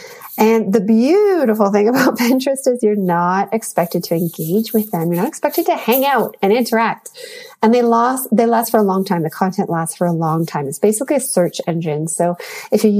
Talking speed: 210 wpm